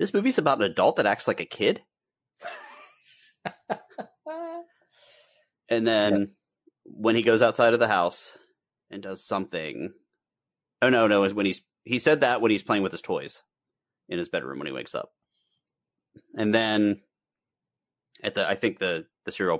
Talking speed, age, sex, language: 160 wpm, 30-49, male, English